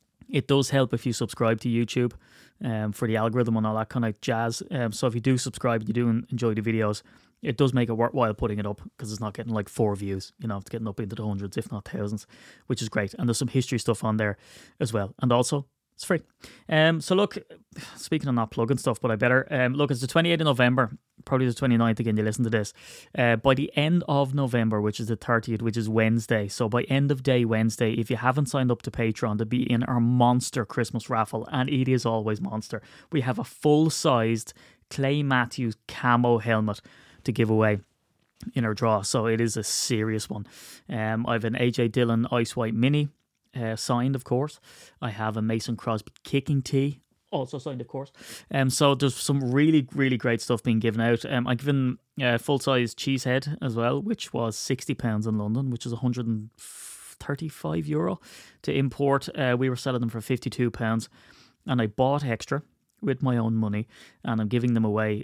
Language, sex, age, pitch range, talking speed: English, male, 20-39, 110-130 Hz, 220 wpm